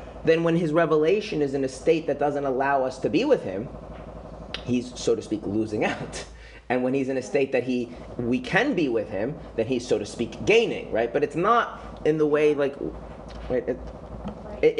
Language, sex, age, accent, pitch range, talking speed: English, male, 30-49, American, 115-165 Hz, 205 wpm